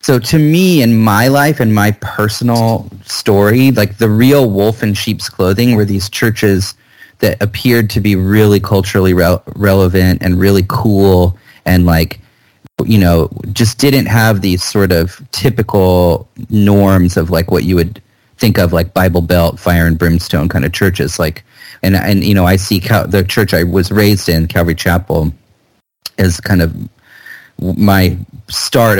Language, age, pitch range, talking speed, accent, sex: English, 30-49, 90-115 Hz, 165 wpm, American, male